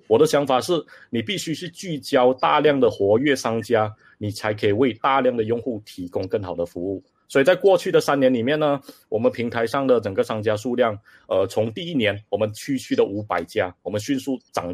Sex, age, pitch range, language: male, 30-49, 105-150 Hz, Chinese